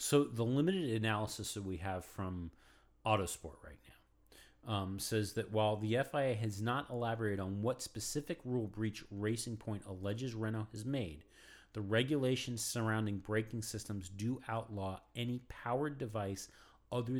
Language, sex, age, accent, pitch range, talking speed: English, male, 40-59, American, 100-125 Hz, 145 wpm